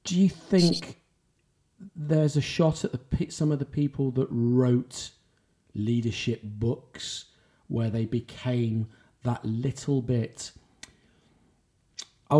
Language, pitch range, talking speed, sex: English, 120-150 Hz, 115 wpm, male